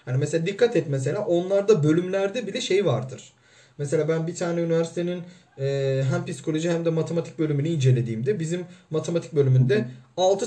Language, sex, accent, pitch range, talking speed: Turkish, male, native, 130-185 Hz, 150 wpm